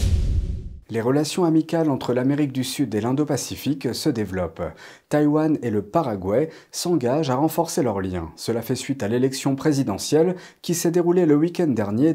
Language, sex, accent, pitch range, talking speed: French, male, French, 115-165 Hz, 160 wpm